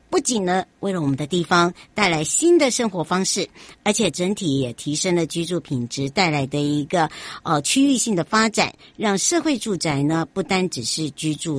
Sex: male